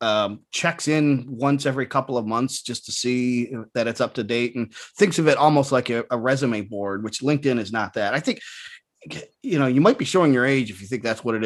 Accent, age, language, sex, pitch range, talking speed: American, 30-49, English, male, 115-145 Hz, 245 wpm